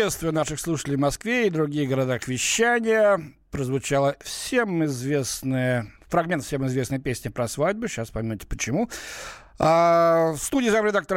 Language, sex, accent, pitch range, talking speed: Russian, male, native, 135-195 Hz, 135 wpm